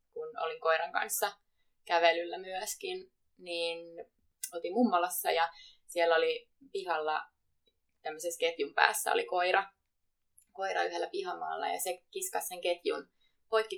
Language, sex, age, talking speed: Finnish, female, 20-39, 120 wpm